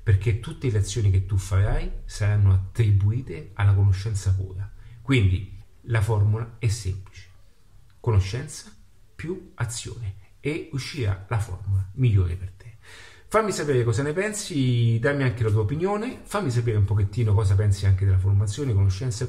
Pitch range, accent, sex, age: 100-130 Hz, native, male, 40-59